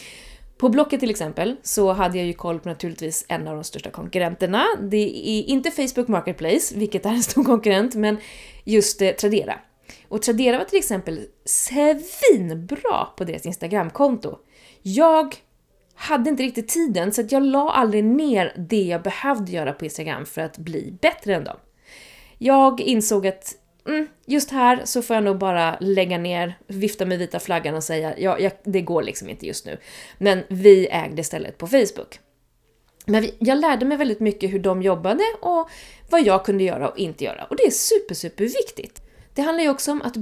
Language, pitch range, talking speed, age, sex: Swedish, 190-275 Hz, 180 wpm, 20-39, female